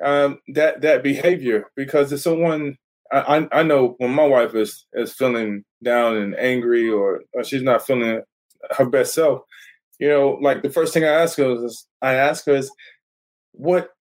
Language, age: English, 20-39